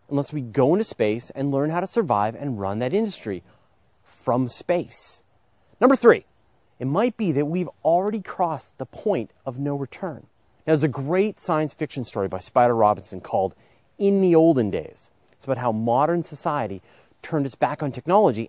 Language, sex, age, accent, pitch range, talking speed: English, male, 30-49, American, 115-170 Hz, 180 wpm